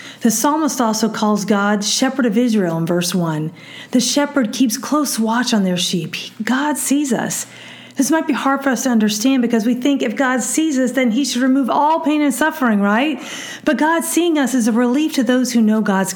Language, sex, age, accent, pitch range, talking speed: English, female, 40-59, American, 195-260 Hz, 215 wpm